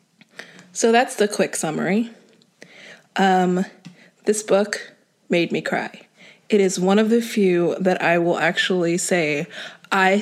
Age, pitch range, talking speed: 20-39, 180-210 Hz, 135 wpm